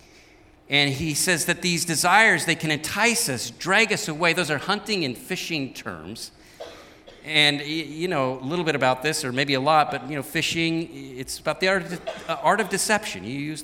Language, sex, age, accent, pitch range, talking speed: English, male, 50-69, American, 145-210 Hz, 190 wpm